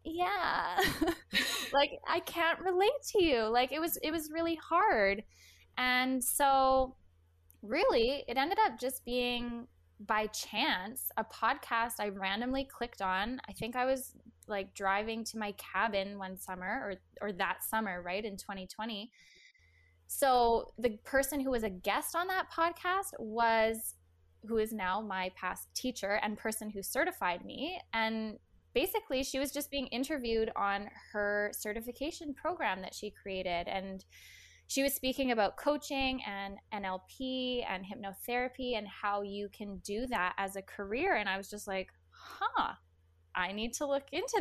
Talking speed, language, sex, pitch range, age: 155 wpm, English, female, 195-265 Hz, 10-29